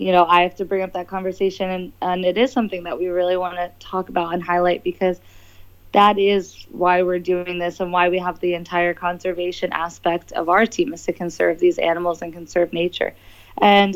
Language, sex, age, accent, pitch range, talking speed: English, female, 20-39, American, 175-200 Hz, 215 wpm